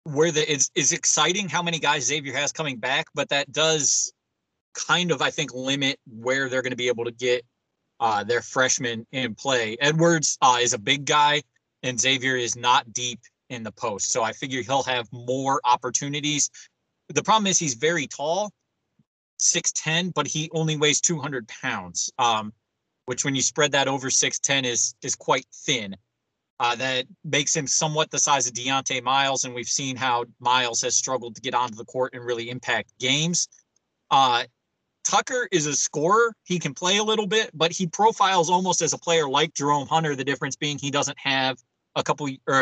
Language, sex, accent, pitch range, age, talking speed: English, male, American, 125-155 Hz, 20-39, 190 wpm